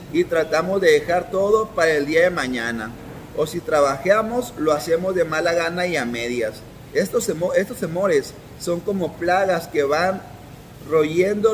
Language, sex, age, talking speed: Spanish, male, 30-49, 150 wpm